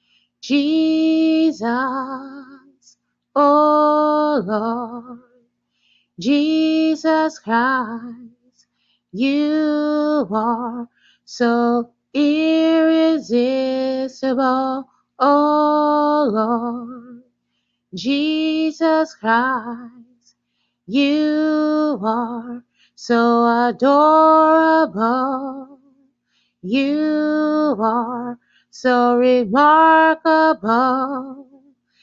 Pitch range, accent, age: 240-300 Hz, American, 30-49